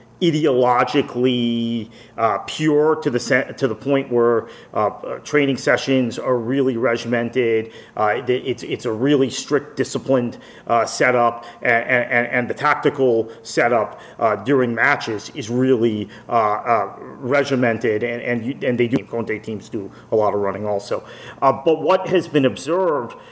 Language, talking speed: English, 150 wpm